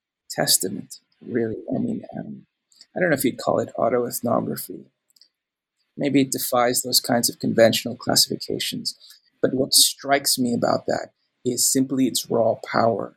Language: English